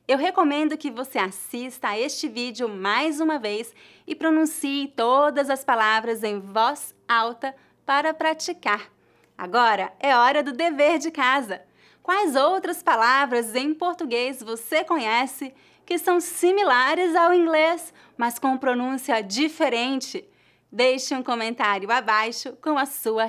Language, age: English, 20-39